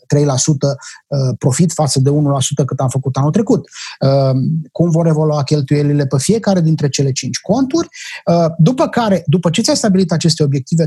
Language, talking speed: English, 155 wpm